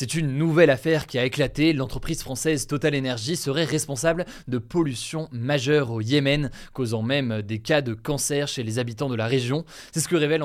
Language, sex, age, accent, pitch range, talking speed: French, male, 20-39, French, 115-145 Hz, 195 wpm